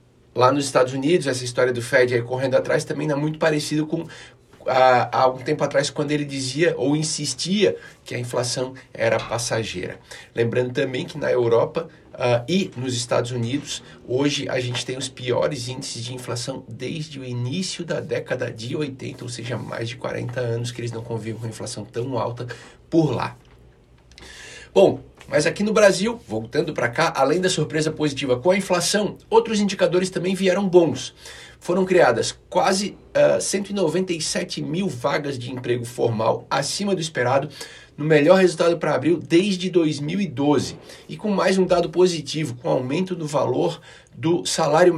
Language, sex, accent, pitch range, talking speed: Portuguese, male, Brazilian, 125-175 Hz, 165 wpm